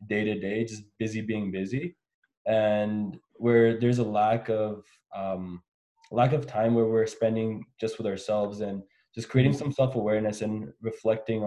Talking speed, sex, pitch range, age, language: 145 wpm, male, 105-115 Hz, 20-39, English